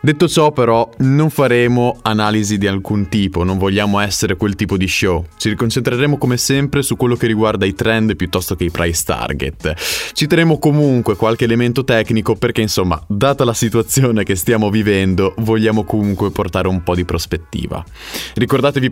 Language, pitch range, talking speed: Italian, 100-130 Hz, 165 wpm